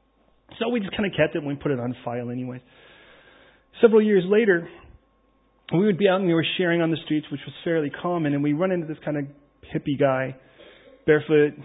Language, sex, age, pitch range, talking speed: English, male, 40-59, 125-150 Hz, 215 wpm